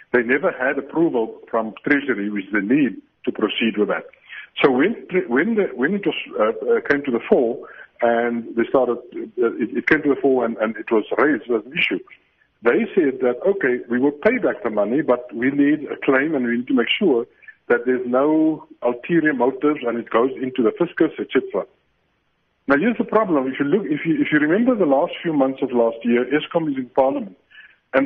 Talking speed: 215 wpm